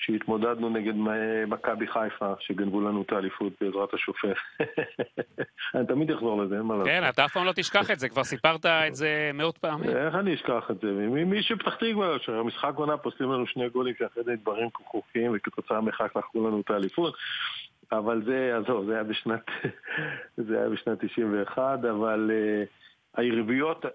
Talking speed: 165 wpm